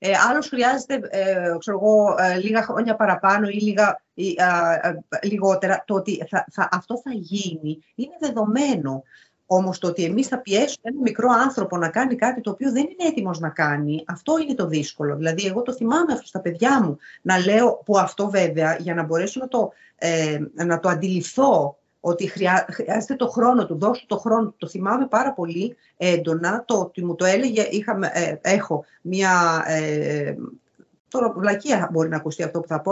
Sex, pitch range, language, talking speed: female, 170-245 Hz, Greek, 165 wpm